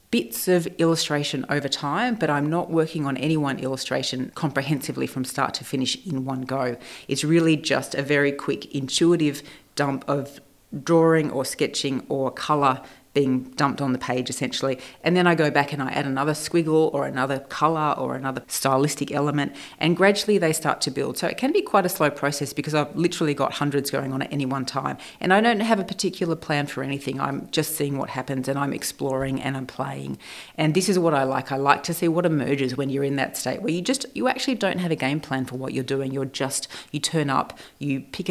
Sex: female